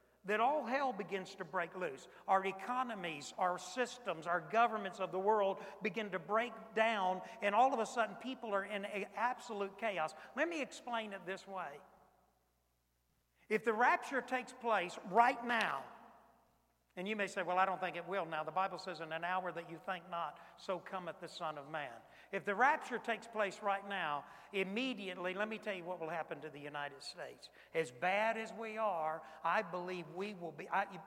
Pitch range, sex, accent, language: 180-225 Hz, male, American, English